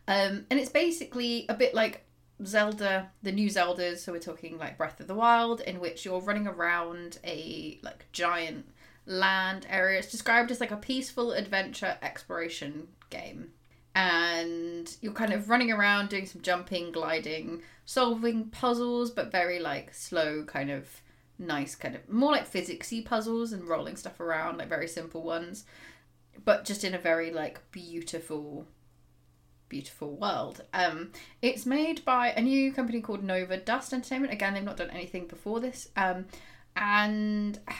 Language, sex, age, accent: English, female, 30-49, British